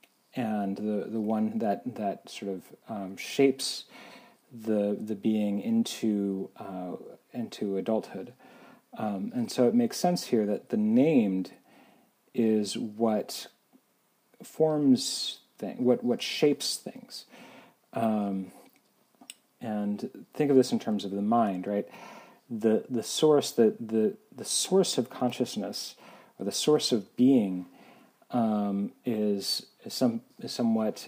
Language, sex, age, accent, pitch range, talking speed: English, male, 40-59, American, 100-130 Hz, 125 wpm